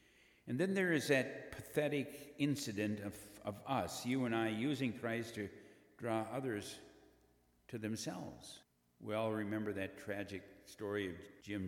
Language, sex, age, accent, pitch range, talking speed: English, male, 60-79, American, 95-115 Hz, 145 wpm